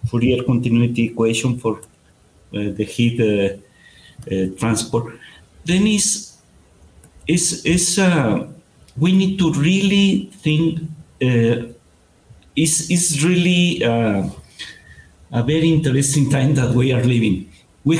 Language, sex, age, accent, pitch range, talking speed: English, male, 50-69, Mexican, 105-155 Hz, 110 wpm